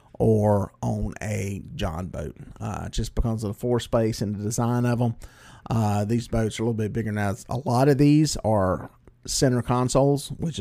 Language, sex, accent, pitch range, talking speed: English, male, American, 105-125 Hz, 190 wpm